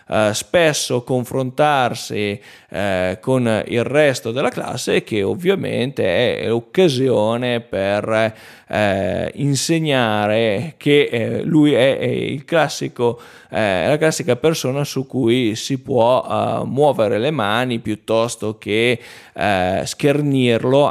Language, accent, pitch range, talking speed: Italian, native, 110-145 Hz, 110 wpm